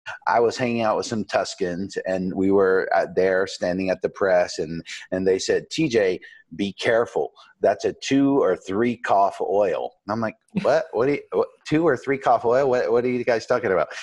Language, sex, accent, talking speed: English, male, American, 215 wpm